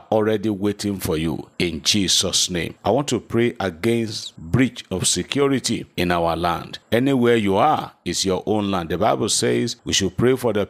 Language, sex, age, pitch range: English, male, 50-69, 90-115 Hz